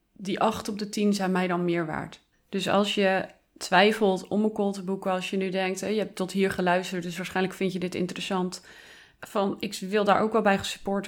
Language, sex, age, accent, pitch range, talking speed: Dutch, female, 30-49, Dutch, 185-210 Hz, 225 wpm